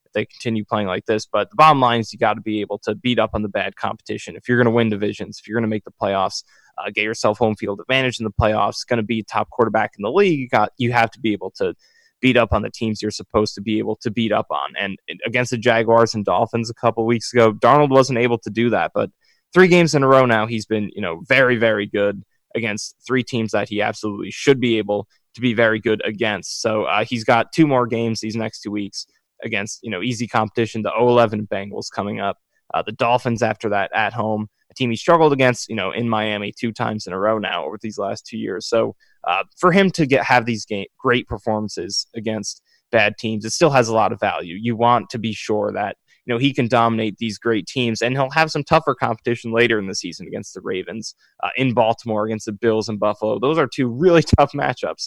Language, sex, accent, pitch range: English, male, American, 110-125 Hz